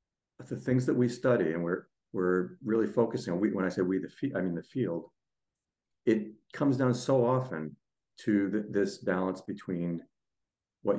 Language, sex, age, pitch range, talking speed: English, male, 50-69, 90-115 Hz, 165 wpm